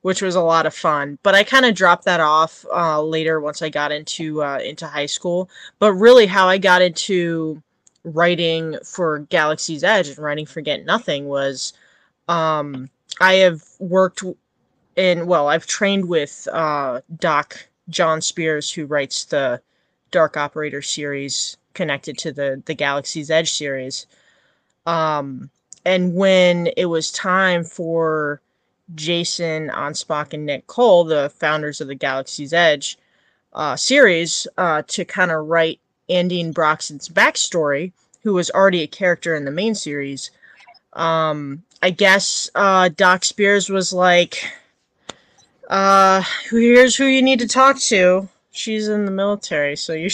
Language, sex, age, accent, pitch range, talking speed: English, female, 20-39, American, 155-190 Hz, 150 wpm